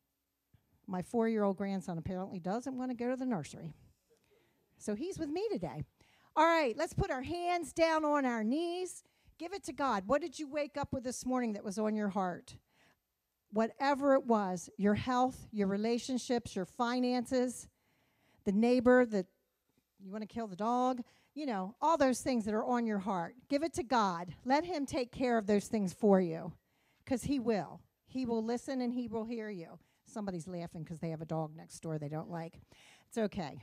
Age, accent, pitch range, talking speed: 50-69, American, 190-255 Hz, 195 wpm